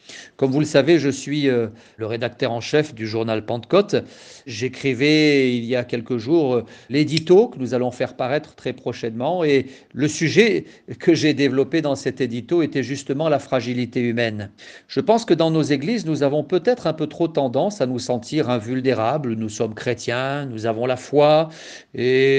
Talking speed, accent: 175 wpm, French